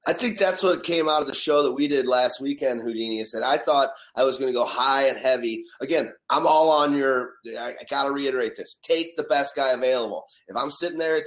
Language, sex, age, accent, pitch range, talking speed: English, male, 30-49, American, 120-155 Hz, 250 wpm